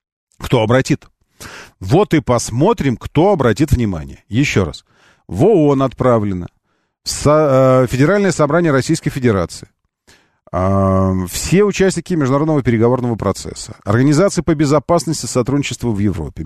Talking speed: 105 wpm